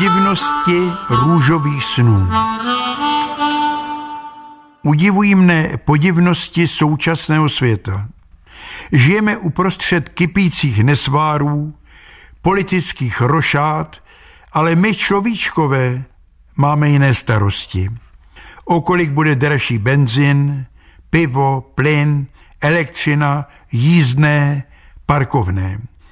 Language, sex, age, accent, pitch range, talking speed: Czech, male, 60-79, native, 140-175 Hz, 65 wpm